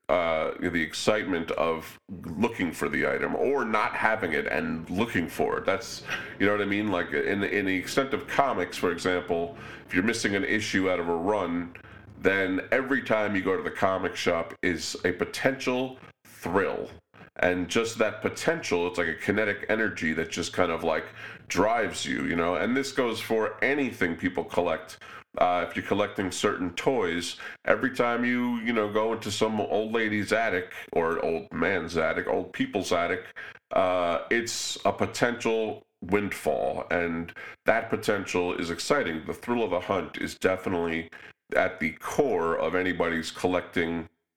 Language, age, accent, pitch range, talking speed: English, 30-49, American, 85-110 Hz, 170 wpm